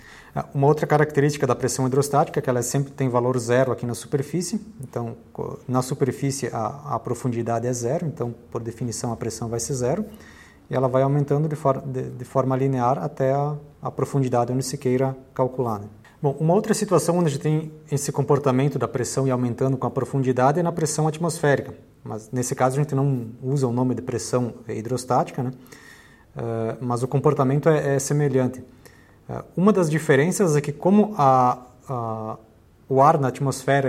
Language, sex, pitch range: Portuguese, male, 120-145 Hz